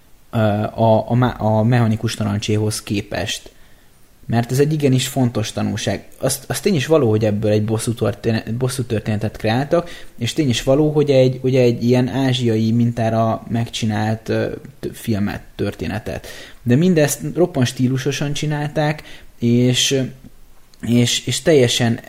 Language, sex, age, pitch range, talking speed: Hungarian, male, 20-39, 110-130 Hz, 135 wpm